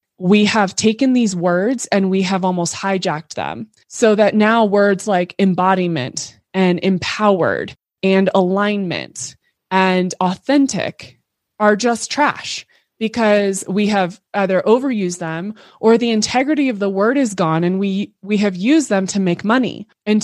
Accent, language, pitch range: American, English, 175-225 Hz